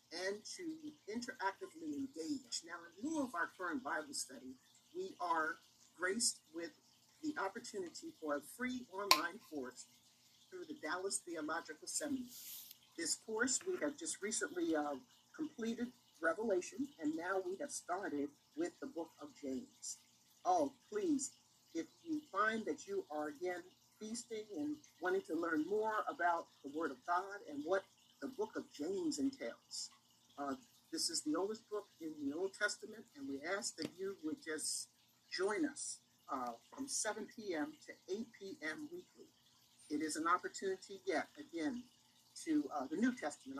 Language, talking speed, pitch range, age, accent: English, 155 wpm, 195-315 Hz, 50-69, American